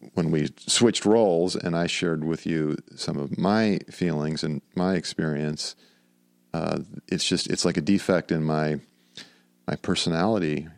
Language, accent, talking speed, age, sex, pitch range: English, American, 150 wpm, 50-69, male, 75-90 Hz